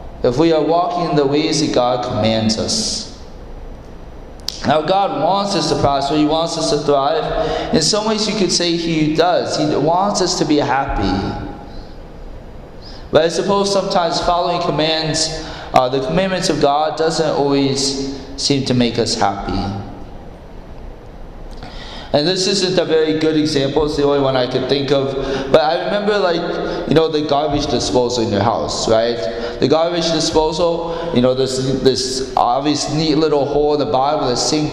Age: 20-39